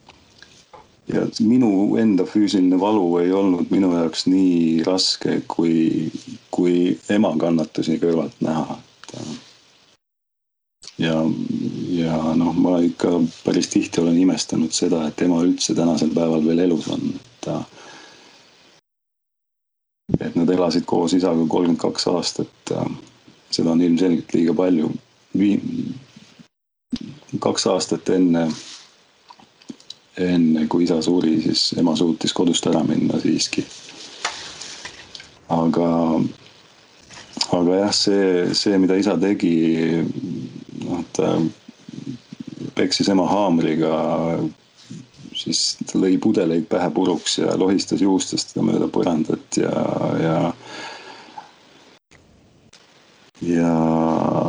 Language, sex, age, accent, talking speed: English, male, 40-59, Finnish, 100 wpm